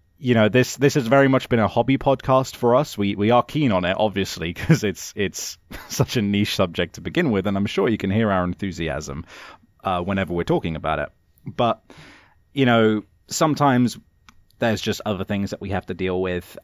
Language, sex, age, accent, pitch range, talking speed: English, male, 30-49, British, 90-115 Hz, 210 wpm